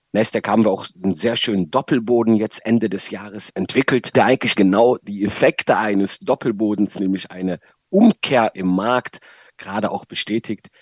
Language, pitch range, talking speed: German, 95-120 Hz, 155 wpm